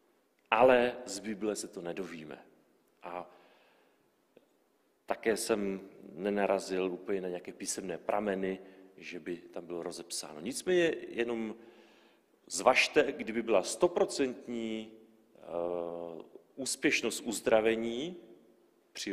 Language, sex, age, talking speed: Czech, male, 40-59, 95 wpm